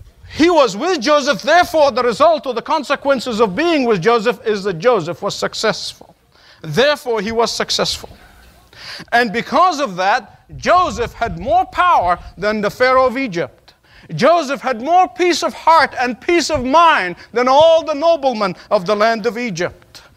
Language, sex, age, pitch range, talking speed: English, male, 50-69, 215-305 Hz, 165 wpm